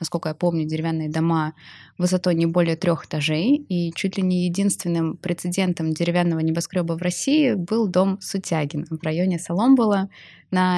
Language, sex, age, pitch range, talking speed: Russian, female, 20-39, 165-195 Hz, 150 wpm